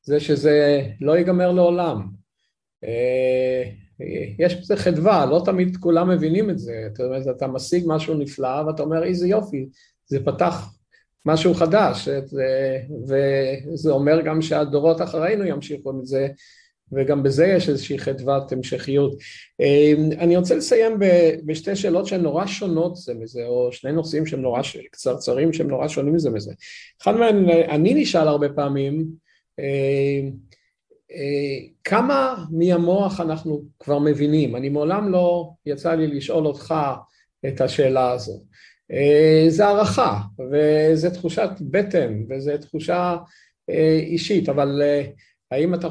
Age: 50-69